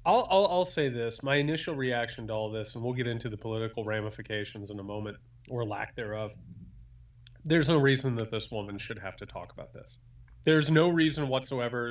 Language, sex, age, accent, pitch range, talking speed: English, male, 30-49, American, 115-140 Hz, 200 wpm